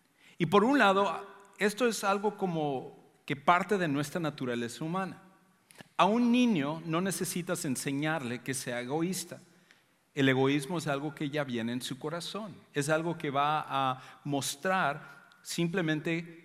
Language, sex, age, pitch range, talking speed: English, male, 50-69, 135-180 Hz, 145 wpm